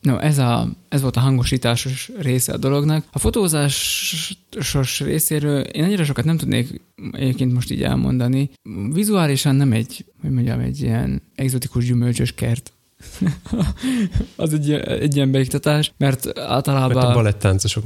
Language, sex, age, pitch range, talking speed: Hungarian, male, 20-39, 120-140 Hz, 135 wpm